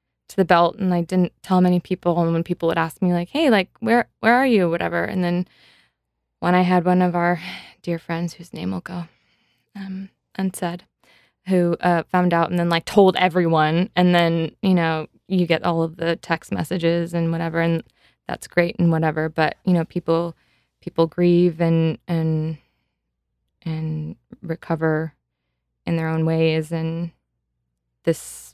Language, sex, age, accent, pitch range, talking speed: English, female, 20-39, American, 160-180 Hz, 170 wpm